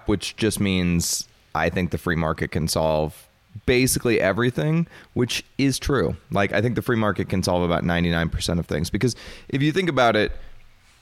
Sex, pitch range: male, 90-110 Hz